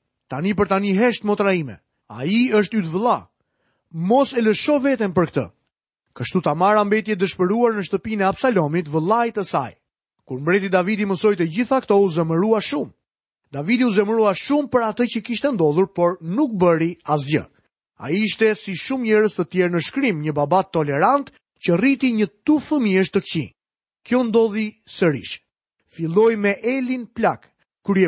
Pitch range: 175-240 Hz